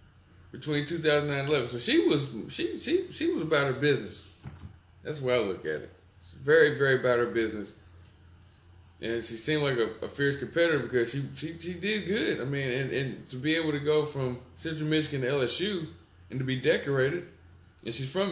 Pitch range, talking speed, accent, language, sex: 90-130 Hz, 190 wpm, American, English, male